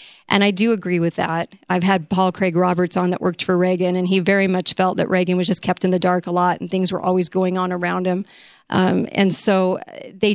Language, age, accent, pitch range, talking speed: English, 40-59, American, 185-225 Hz, 250 wpm